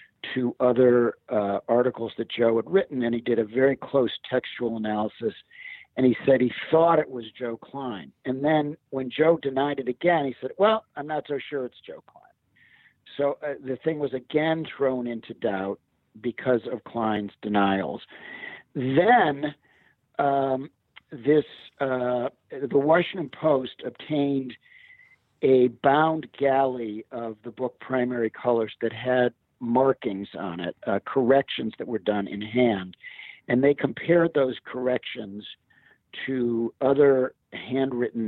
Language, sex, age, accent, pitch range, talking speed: English, male, 60-79, American, 110-140 Hz, 145 wpm